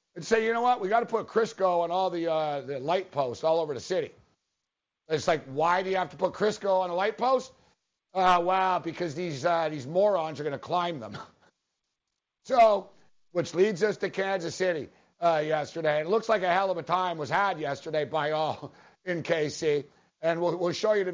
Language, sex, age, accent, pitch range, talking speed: English, male, 60-79, American, 170-225 Hz, 220 wpm